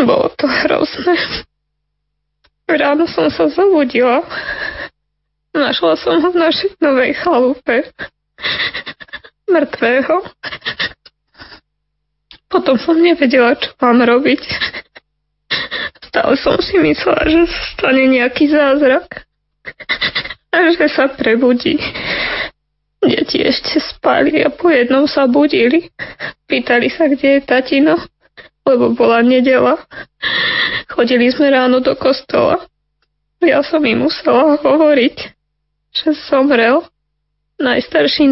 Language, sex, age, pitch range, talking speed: Slovak, female, 20-39, 250-305 Hz, 100 wpm